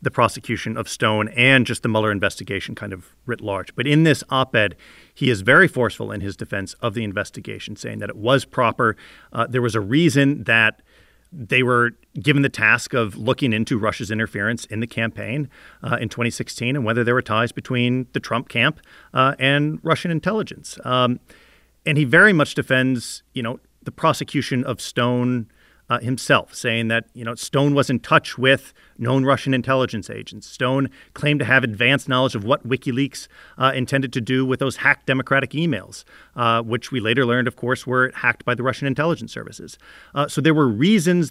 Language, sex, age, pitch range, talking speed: English, male, 40-59, 115-140 Hz, 190 wpm